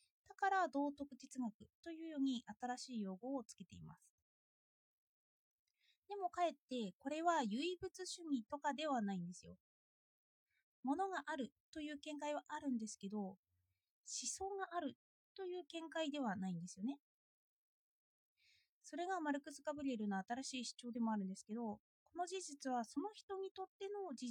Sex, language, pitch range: female, Japanese, 215-320 Hz